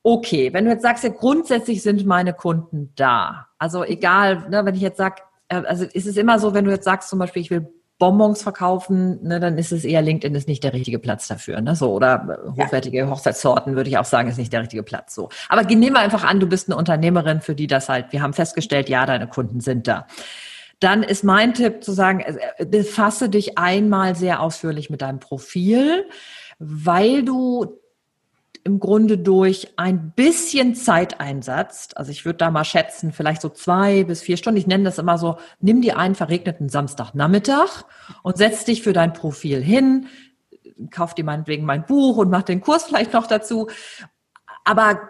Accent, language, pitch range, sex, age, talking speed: German, German, 170-225 Hz, female, 40-59, 190 wpm